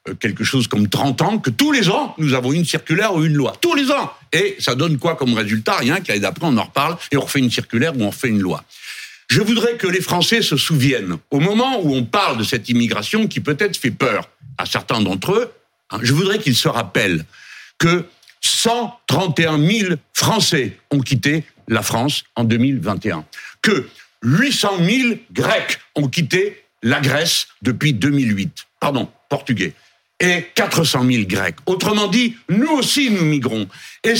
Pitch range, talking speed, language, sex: 125-210 Hz, 180 wpm, French, male